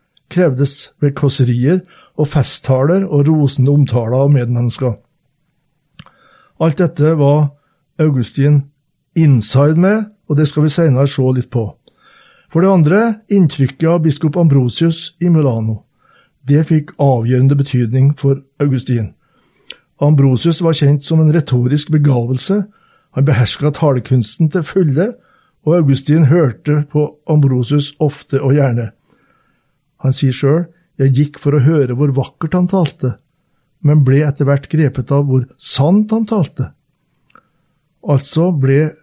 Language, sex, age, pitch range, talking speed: English, male, 60-79, 135-165 Hz, 125 wpm